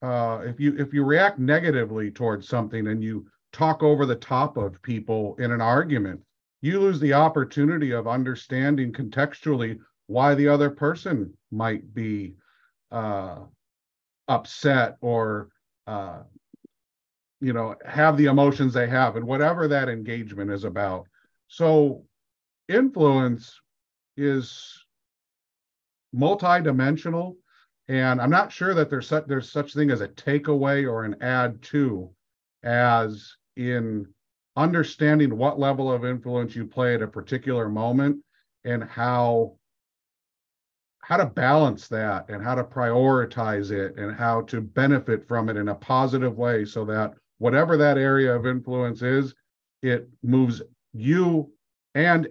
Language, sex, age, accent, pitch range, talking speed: English, male, 50-69, American, 110-140 Hz, 135 wpm